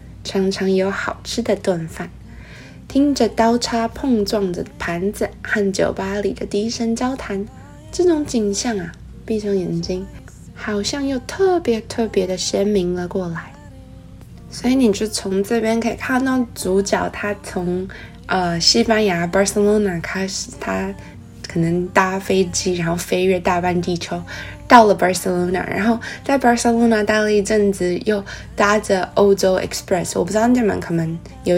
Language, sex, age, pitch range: Chinese, female, 20-39, 180-220 Hz